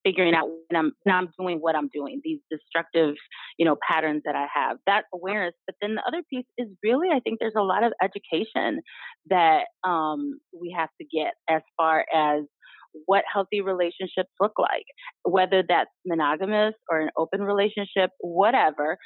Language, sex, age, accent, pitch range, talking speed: English, female, 30-49, American, 170-225 Hz, 175 wpm